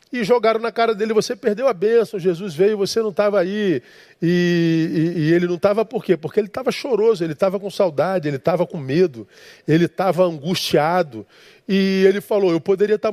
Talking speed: 205 wpm